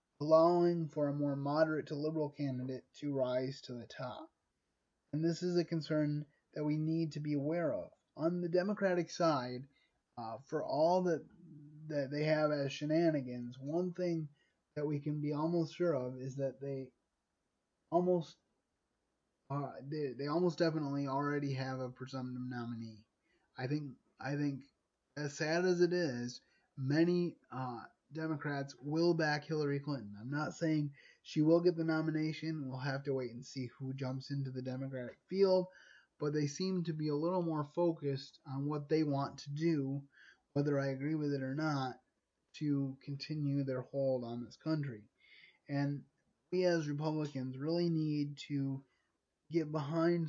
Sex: male